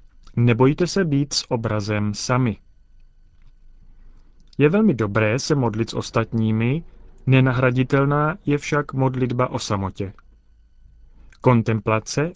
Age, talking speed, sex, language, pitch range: 30-49, 95 wpm, male, Czech, 100-140 Hz